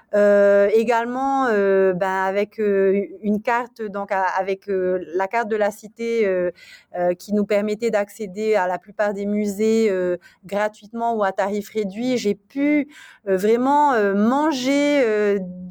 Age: 30-49